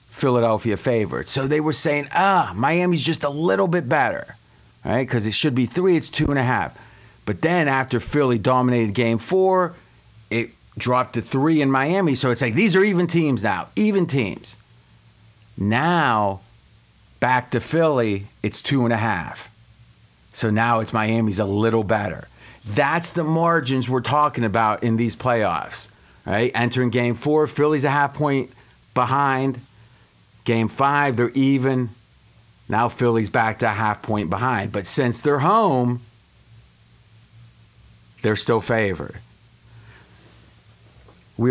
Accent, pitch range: American, 110-145 Hz